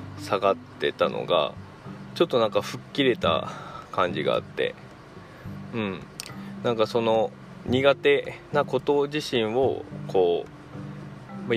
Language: Japanese